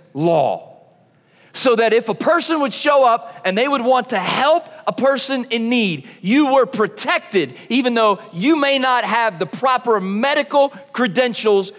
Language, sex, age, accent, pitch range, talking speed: English, male, 40-59, American, 160-230 Hz, 165 wpm